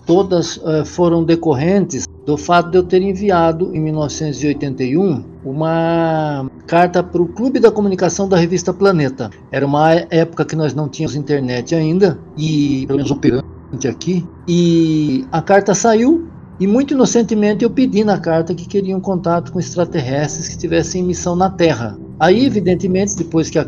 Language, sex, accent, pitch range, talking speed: Portuguese, male, Brazilian, 145-195 Hz, 155 wpm